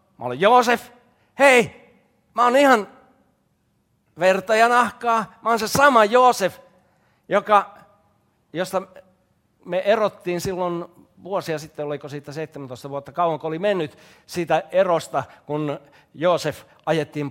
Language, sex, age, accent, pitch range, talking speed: Finnish, male, 60-79, native, 125-190 Hz, 115 wpm